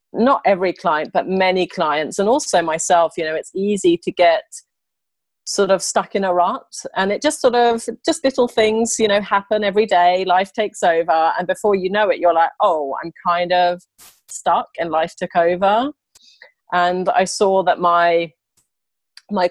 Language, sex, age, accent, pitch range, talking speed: English, female, 30-49, British, 165-200 Hz, 180 wpm